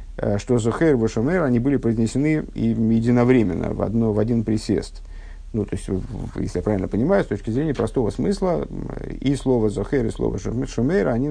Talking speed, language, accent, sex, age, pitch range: 175 wpm, Russian, native, male, 50-69, 105-135 Hz